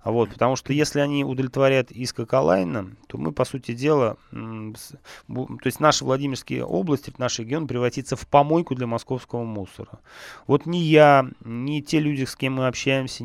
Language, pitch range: Russian, 115-145 Hz